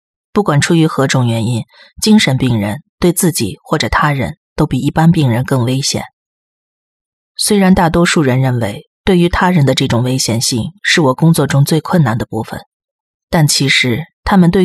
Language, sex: Chinese, female